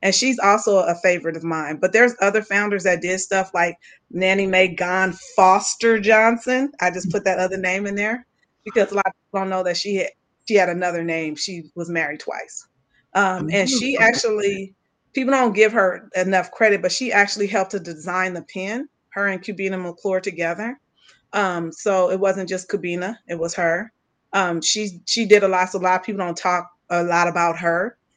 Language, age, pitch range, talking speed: English, 30-49, 175-205 Hz, 200 wpm